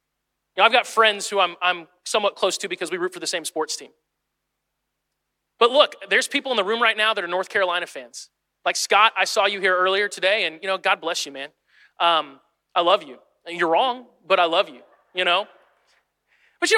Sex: male